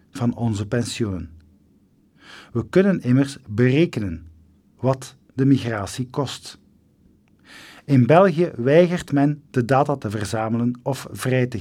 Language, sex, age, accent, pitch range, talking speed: Dutch, male, 50-69, Dutch, 100-140 Hz, 115 wpm